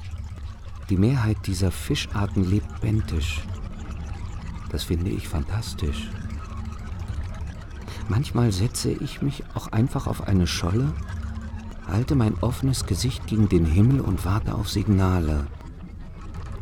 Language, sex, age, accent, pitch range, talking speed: German, male, 50-69, German, 85-110 Hz, 110 wpm